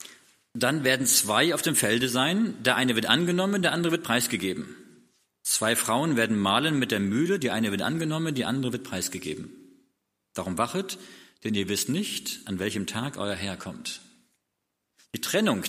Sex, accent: male, German